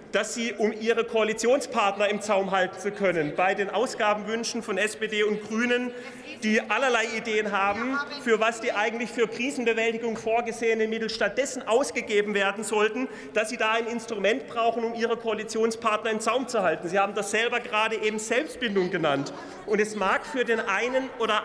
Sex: male